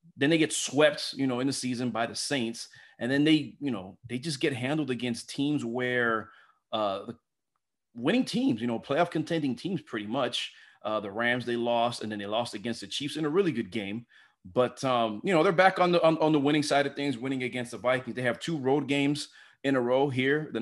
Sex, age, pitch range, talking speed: male, 30-49, 110-140 Hz, 235 wpm